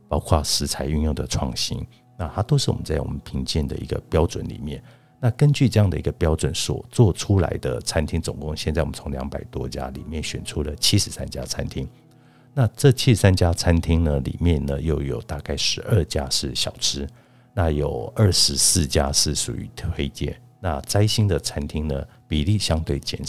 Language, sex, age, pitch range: Chinese, male, 50-69, 75-105 Hz